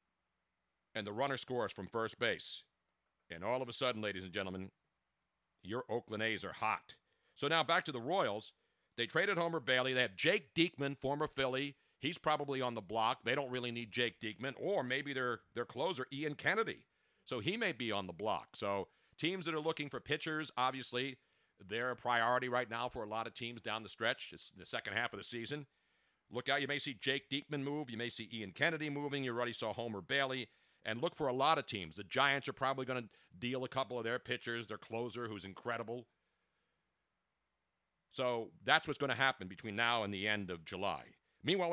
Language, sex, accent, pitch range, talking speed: English, male, American, 110-140 Hz, 205 wpm